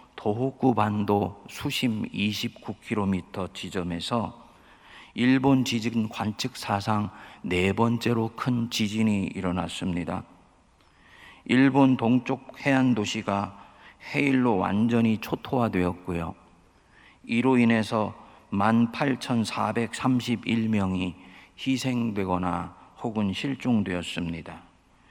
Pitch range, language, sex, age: 95-120 Hz, Korean, male, 50-69